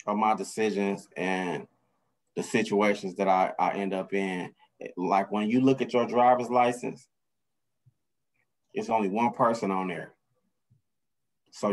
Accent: American